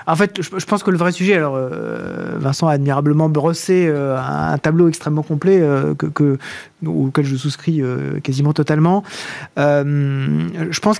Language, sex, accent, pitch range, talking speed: French, male, French, 170-220 Hz, 130 wpm